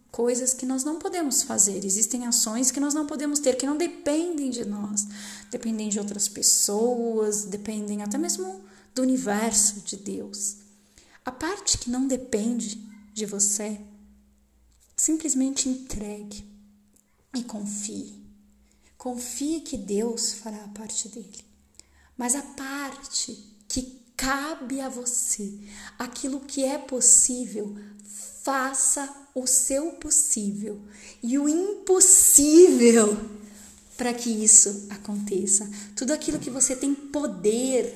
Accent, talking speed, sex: Brazilian, 115 wpm, female